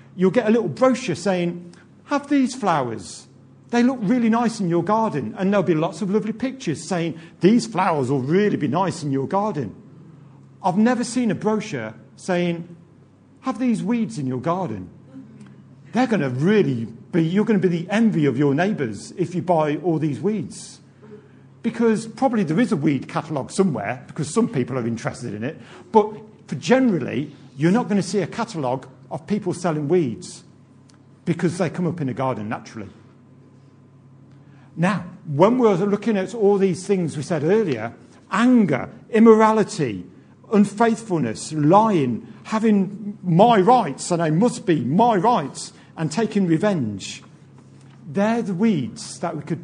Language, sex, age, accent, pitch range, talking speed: English, male, 50-69, British, 145-215 Hz, 165 wpm